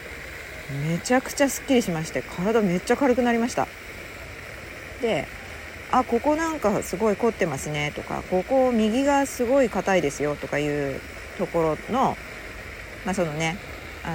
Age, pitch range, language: 40-59, 160-235 Hz, Japanese